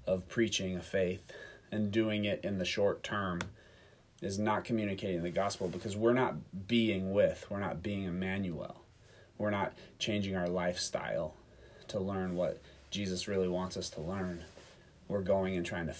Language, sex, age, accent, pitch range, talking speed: English, male, 30-49, American, 95-110 Hz, 165 wpm